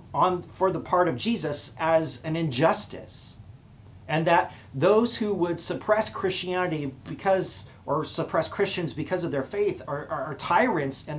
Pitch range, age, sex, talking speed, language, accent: 120-185 Hz, 40-59, male, 155 wpm, English, American